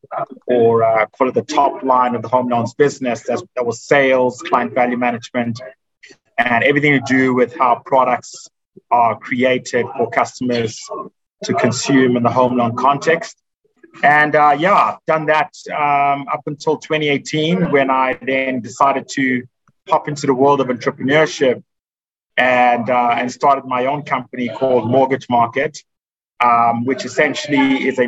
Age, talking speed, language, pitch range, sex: 30-49, 150 wpm, English, 125-145 Hz, male